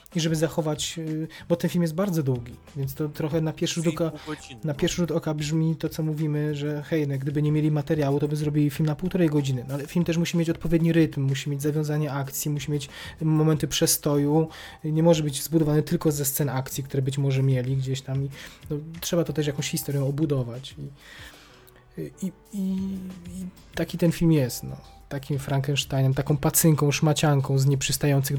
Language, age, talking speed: Polish, 20-39, 190 wpm